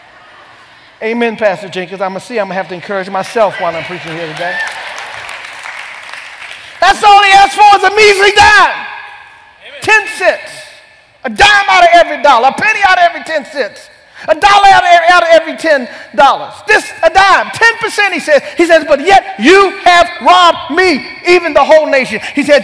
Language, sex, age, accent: English, male, 40-59, American